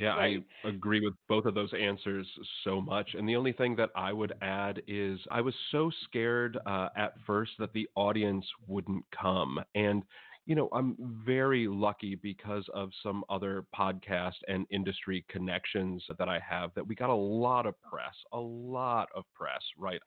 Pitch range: 95-120 Hz